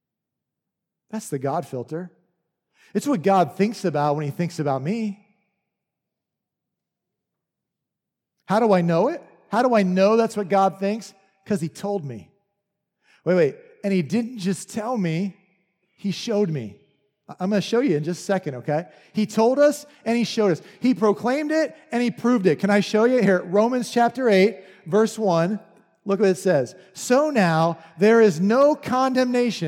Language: English